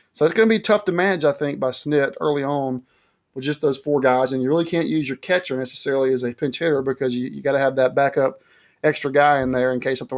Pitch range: 130-155 Hz